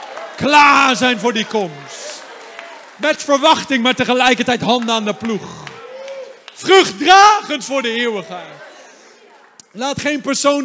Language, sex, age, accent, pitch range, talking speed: Dutch, male, 40-59, Dutch, 200-270 Hz, 115 wpm